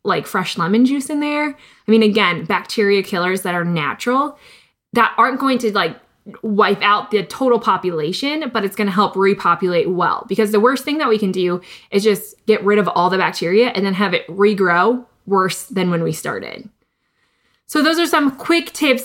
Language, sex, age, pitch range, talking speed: English, female, 20-39, 190-235 Hz, 195 wpm